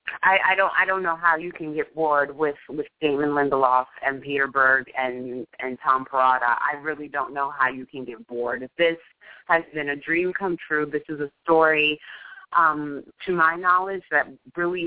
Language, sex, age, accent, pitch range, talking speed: English, female, 30-49, American, 145-165 Hz, 200 wpm